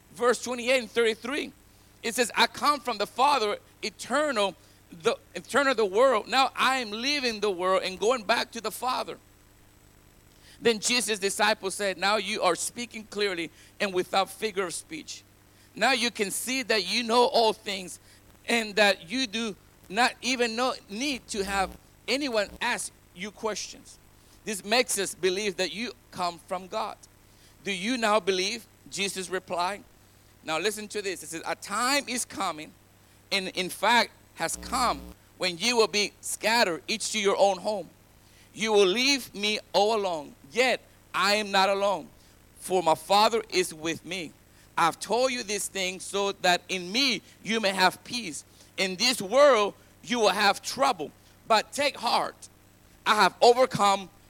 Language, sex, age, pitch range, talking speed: English, male, 50-69, 185-240 Hz, 165 wpm